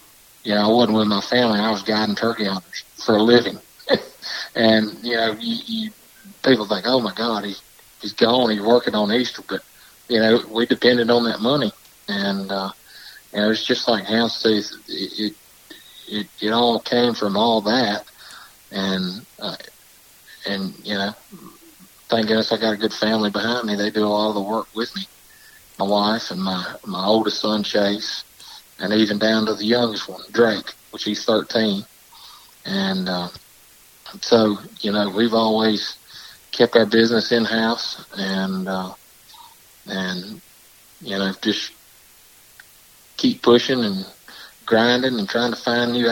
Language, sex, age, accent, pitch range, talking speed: English, male, 50-69, American, 105-115 Hz, 165 wpm